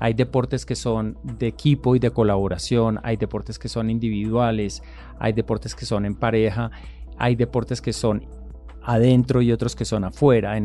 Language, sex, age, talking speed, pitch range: Spanish, male, 40-59, 175 wpm, 110-140 Hz